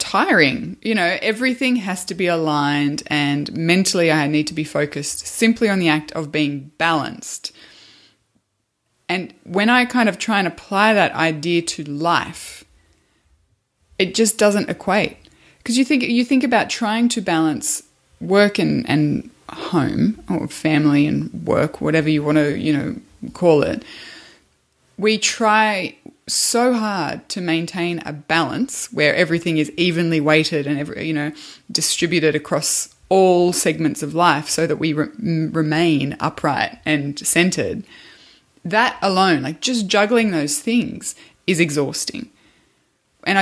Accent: Australian